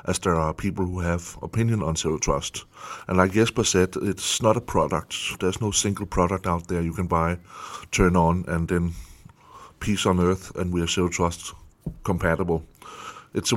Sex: male